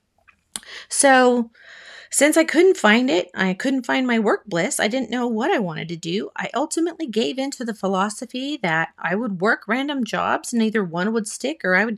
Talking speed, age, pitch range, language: 205 wpm, 30-49, 180-235 Hz, English